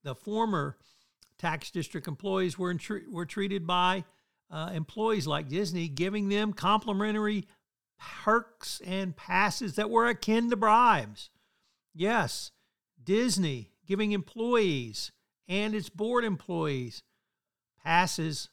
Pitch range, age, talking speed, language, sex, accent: 140-195 Hz, 60-79, 110 wpm, English, male, American